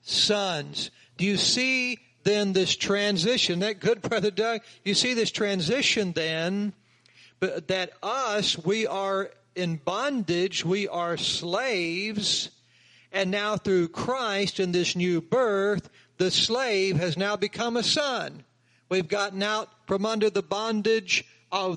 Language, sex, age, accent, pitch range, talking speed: English, male, 60-79, American, 180-230 Hz, 135 wpm